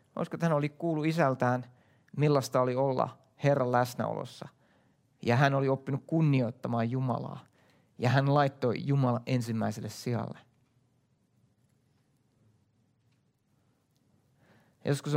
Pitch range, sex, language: 115-140 Hz, male, English